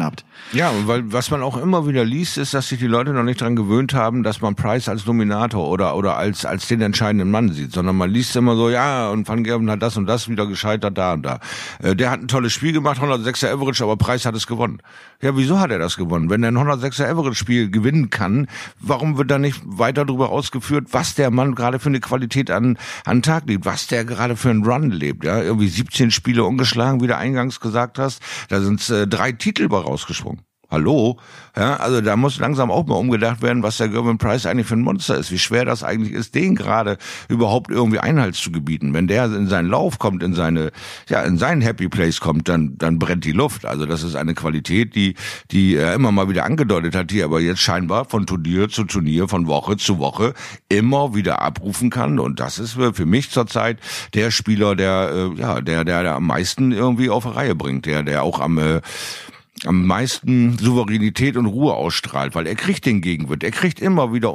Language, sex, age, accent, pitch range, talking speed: German, male, 50-69, German, 95-125 Hz, 220 wpm